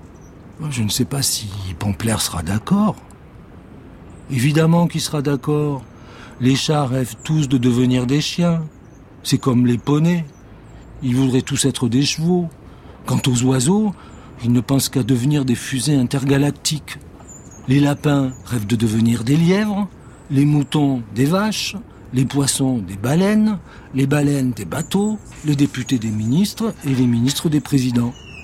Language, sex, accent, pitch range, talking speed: French, male, French, 120-155 Hz, 145 wpm